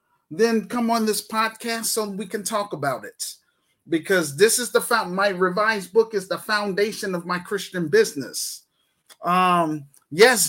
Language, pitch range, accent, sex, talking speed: English, 170-220 Hz, American, male, 155 wpm